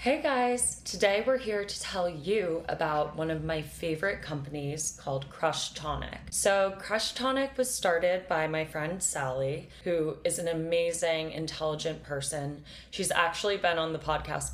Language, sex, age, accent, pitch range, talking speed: English, female, 20-39, American, 155-195 Hz, 155 wpm